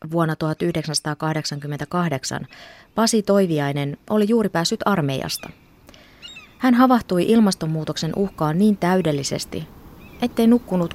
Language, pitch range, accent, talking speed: Finnish, 150-200 Hz, native, 90 wpm